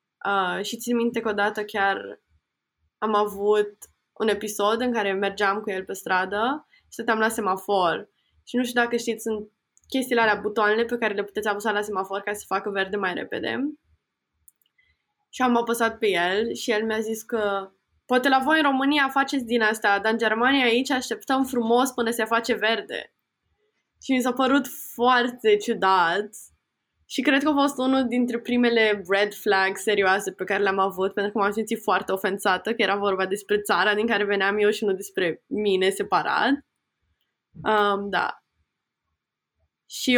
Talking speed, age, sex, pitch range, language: 170 wpm, 10-29, female, 200-235 Hz, Romanian